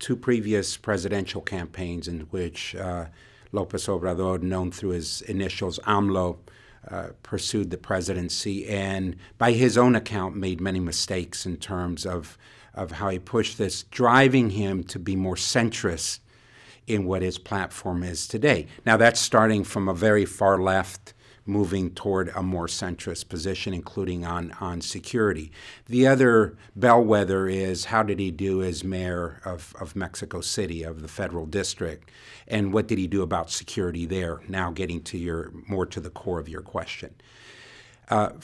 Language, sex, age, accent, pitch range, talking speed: English, male, 60-79, American, 90-110 Hz, 160 wpm